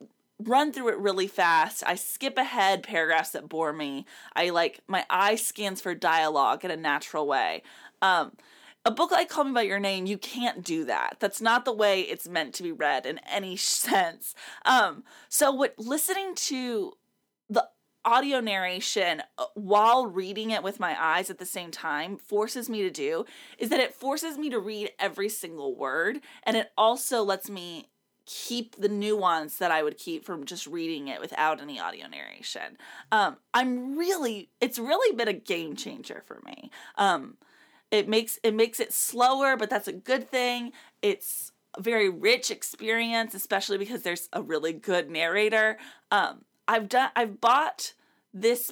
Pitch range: 195-260 Hz